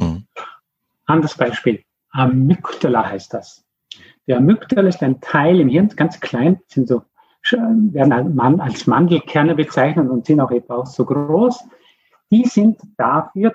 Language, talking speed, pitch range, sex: German, 135 wpm, 130-205 Hz, male